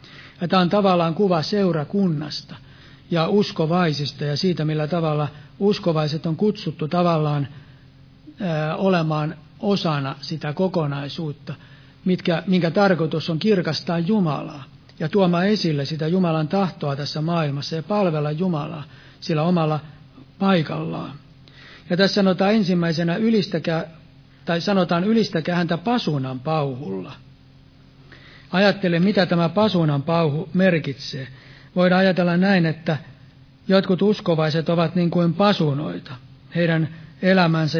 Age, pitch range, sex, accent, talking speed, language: 60-79, 145-180 Hz, male, native, 110 wpm, Finnish